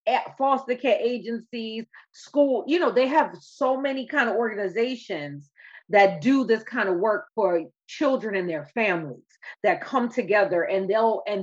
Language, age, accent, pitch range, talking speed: English, 30-49, American, 180-225 Hz, 165 wpm